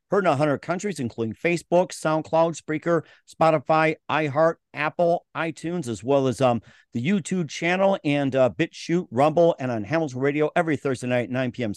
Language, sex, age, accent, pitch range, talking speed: English, male, 50-69, American, 130-160 Hz, 165 wpm